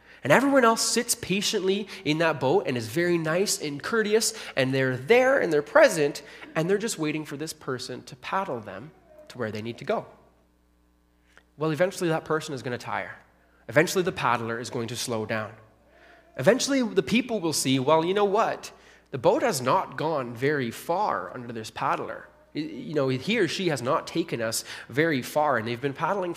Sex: male